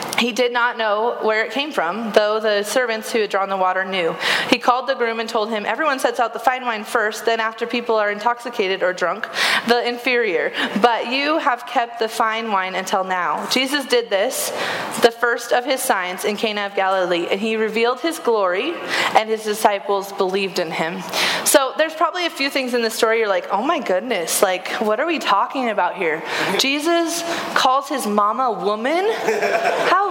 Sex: female